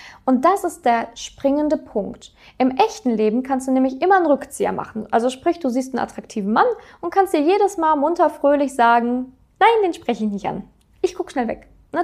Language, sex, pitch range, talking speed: German, female, 220-310 Hz, 210 wpm